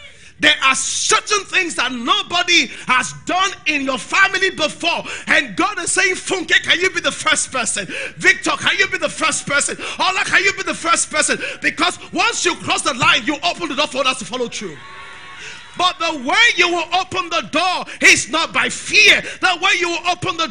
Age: 40-59